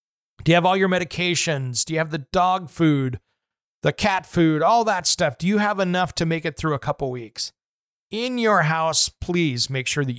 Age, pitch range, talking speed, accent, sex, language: 40-59, 140-175 Hz, 210 wpm, American, male, English